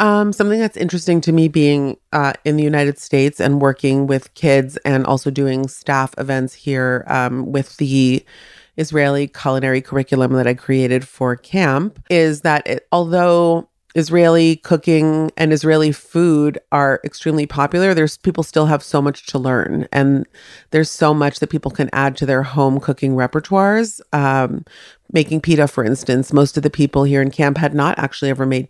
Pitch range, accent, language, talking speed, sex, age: 140-160 Hz, American, English, 175 wpm, female, 30-49